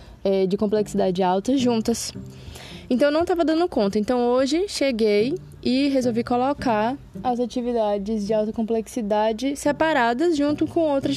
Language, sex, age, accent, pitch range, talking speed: Portuguese, female, 20-39, Brazilian, 210-270 Hz, 135 wpm